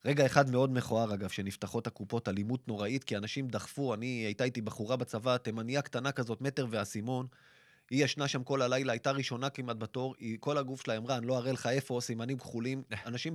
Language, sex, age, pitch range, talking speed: Hebrew, male, 30-49, 110-135 Hz, 200 wpm